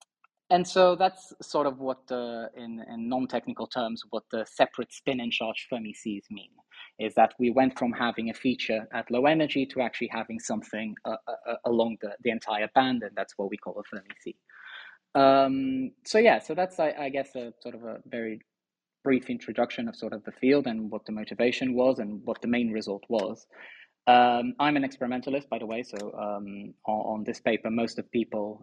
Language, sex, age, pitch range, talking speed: English, male, 20-39, 110-130 Hz, 195 wpm